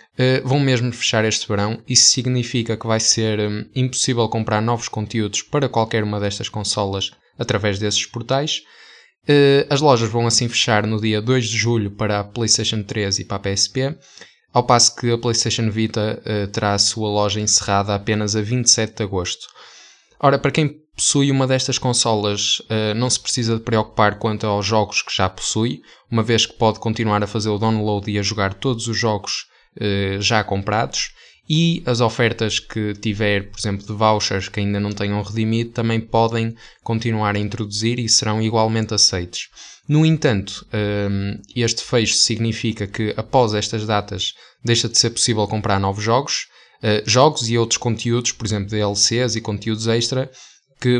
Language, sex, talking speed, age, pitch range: Portuguese, male, 165 wpm, 10-29, 105-120 Hz